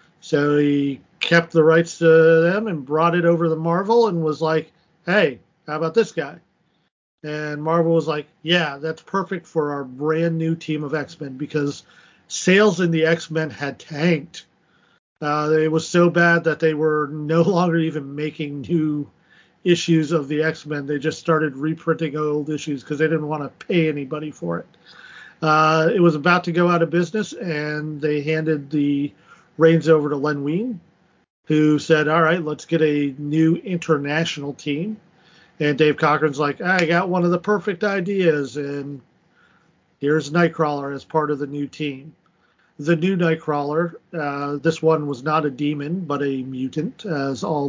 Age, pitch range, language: 40-59, 150-170 Hz, English